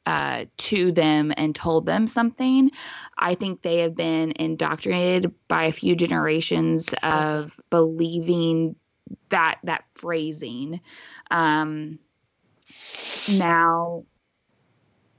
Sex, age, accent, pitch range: female, 20-39, American, 155-180 Hz